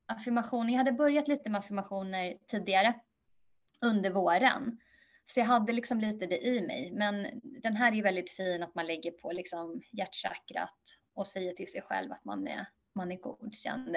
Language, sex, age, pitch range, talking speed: Swedish, female, 20-39, 195-255 Hz, 175 wpm